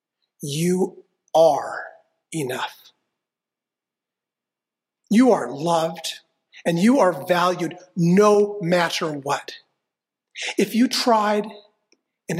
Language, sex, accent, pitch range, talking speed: English, male, American, 160-210 Hz, 80 wpm